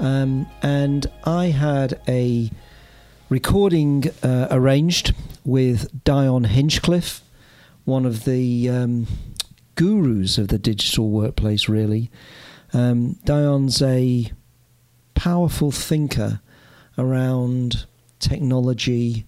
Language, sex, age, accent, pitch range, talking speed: English, male, 40-59, British, 120-140 Hz, 85 wpm